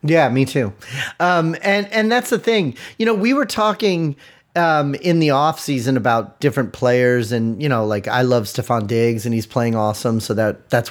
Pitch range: 125-165 Hz